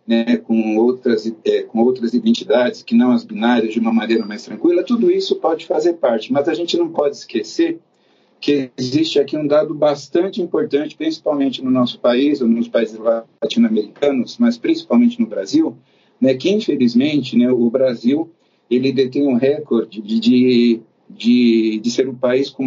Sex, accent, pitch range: male, Brazilian, 120-200 Hz